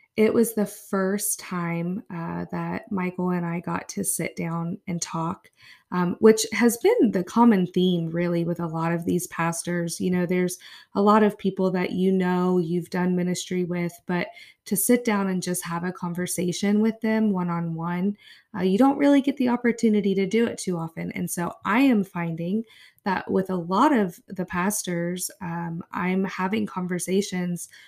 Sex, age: female, 20-39